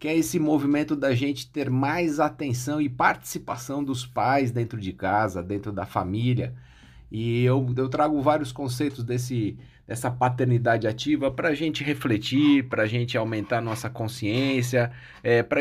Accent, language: Brazilian, Portuguese